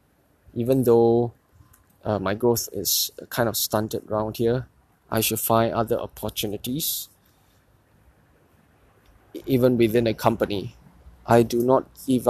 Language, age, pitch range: English, 20-39, 105-125 Hz